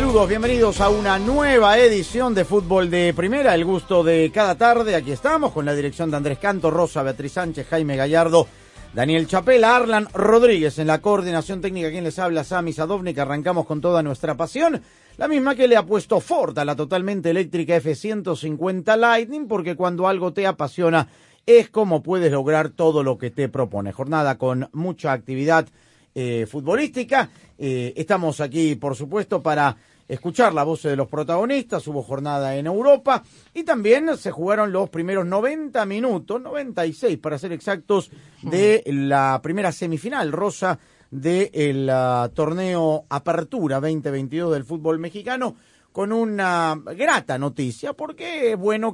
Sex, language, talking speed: male, Spanish, 155 wpm